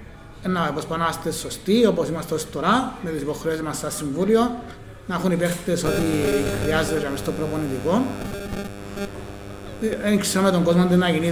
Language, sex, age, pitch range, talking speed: Greek, male, 30-49, 150-180 Hz, 125 wpm